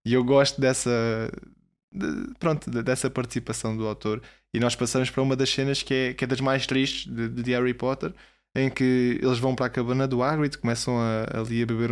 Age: 20-39